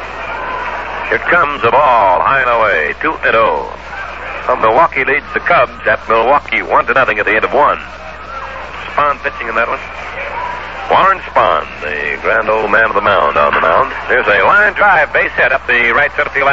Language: English